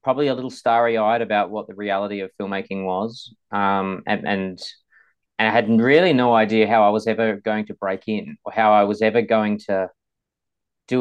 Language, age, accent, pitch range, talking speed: English, 20-39, Australian, 100-115 Hz, 190 wpm